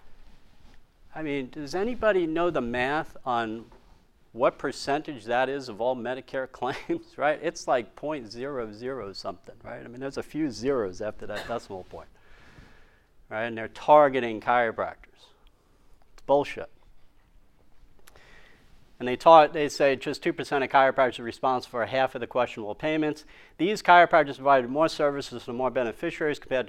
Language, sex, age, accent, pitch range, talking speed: English, male, 40-59, American, 125-170 Hz, 145 wpm